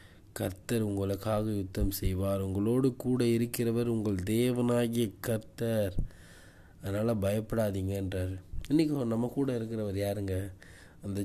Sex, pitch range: male, 95-120 Hz